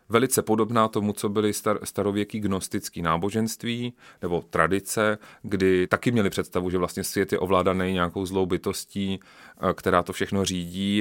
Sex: male